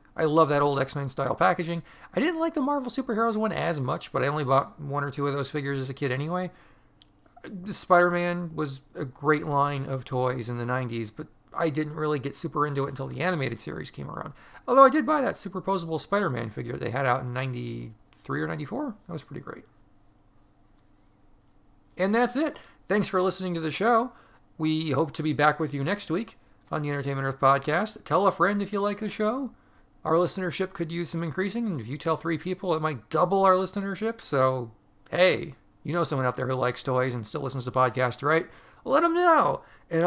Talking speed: 210 wpm